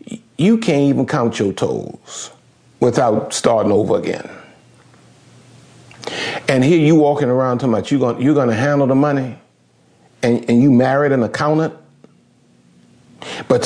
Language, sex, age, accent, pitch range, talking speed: English, male, 50-69, American, 140-180 Hz, 135 wpm